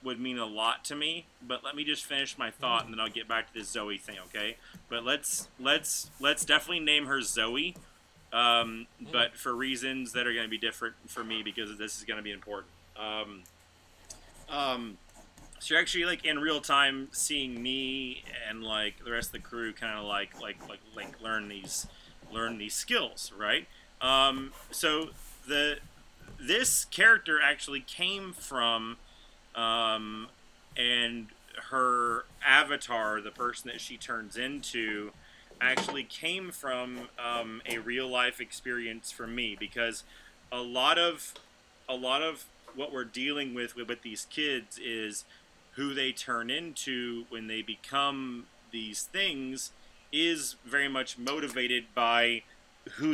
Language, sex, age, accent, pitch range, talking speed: English, male, 30-49, American, 110-135 Hz, 155 wpm